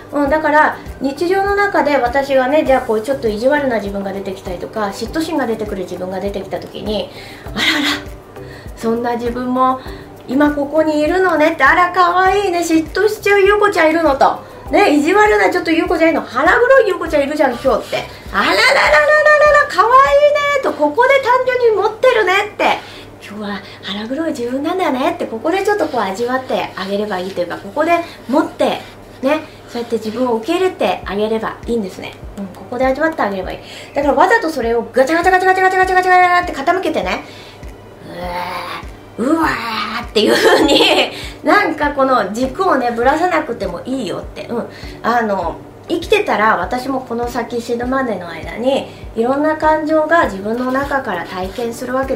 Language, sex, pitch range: Japanese, female, 235-335 Hz